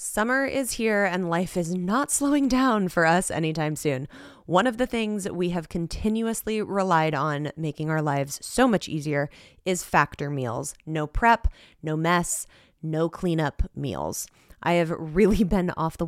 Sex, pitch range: female, 160-200 Hz